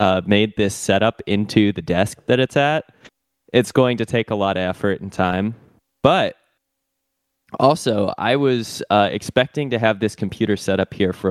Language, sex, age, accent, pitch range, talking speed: English, male, 20-39, American, 95-115 Hz, 180 wpm